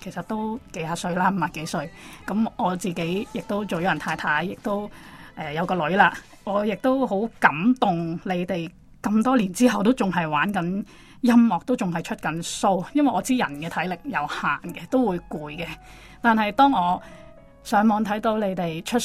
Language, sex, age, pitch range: Chinese, female, 20-39, 170-220 Hz